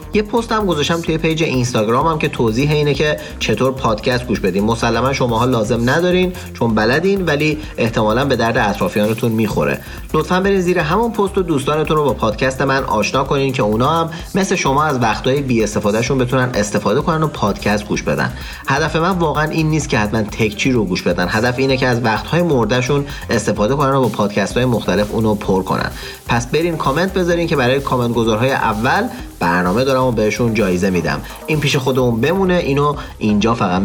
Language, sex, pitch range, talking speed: Persian, male, 110-160 Hz, 185 wpm